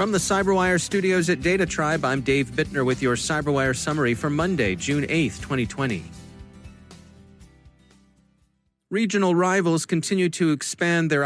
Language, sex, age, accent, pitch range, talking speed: English, male, 40-59, American, 130-165 Hz, 135 wpm